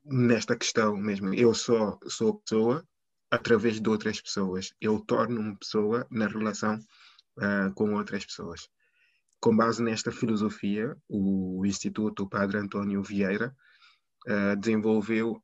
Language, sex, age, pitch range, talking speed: Portuguese, male, 20-39, 100-115 Hz, 130 wpm